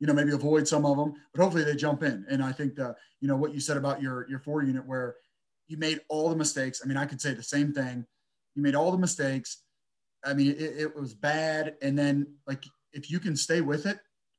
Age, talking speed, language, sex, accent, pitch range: 30-49, 250 wpm, English, male, American, 135-160 Hz